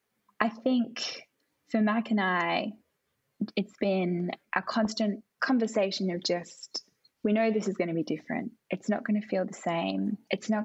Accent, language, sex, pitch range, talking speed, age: Australian, English, female, 180-215 Hz, 170 wpm, 10-29